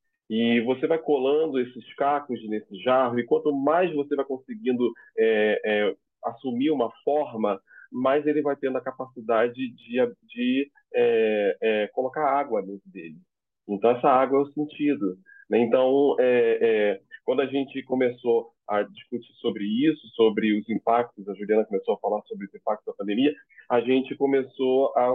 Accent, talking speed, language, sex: Brazilian, 160 wpm, Portuguese, male